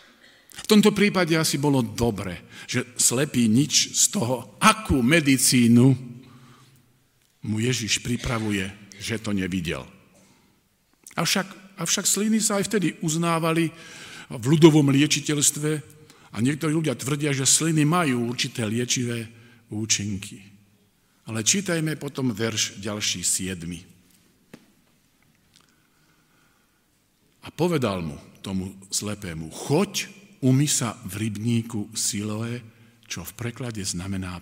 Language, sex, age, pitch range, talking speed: Slovak, male, 50-69, 105-140 Hz, 105 wpm